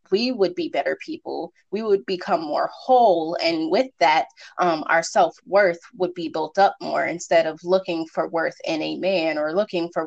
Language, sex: English, female